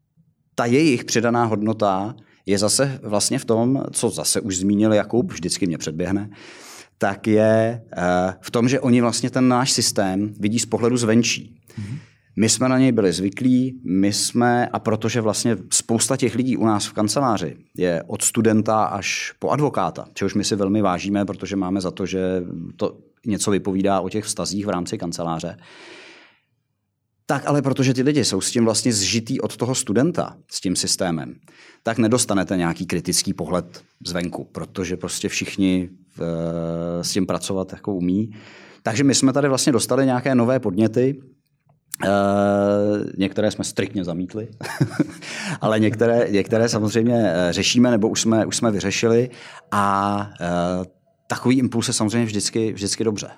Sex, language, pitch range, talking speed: male, Czech, 100-120 Hz, 150 wpm